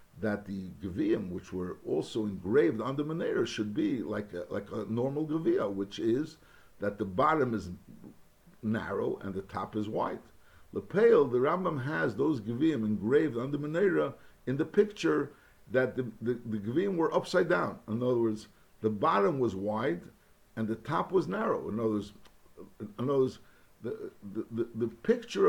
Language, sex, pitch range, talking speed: English, male, 105-145 Hz, 175 wpm